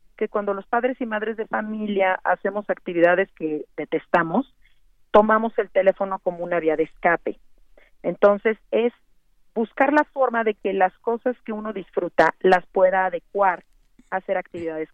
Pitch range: 185-225 Hz